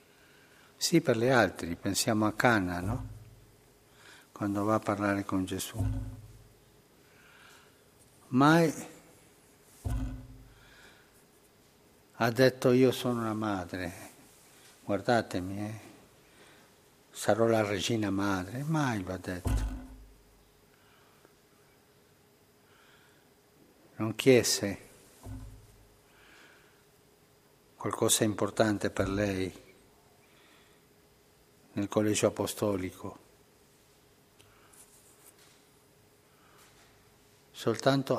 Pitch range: 100-130 Hz